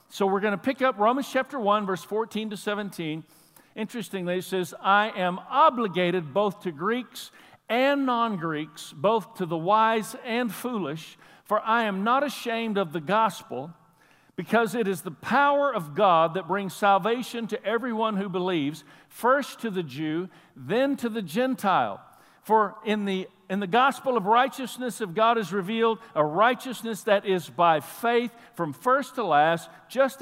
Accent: American